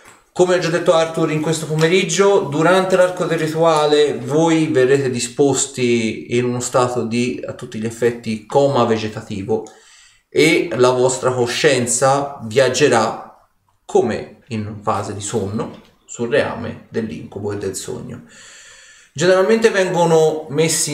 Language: Italian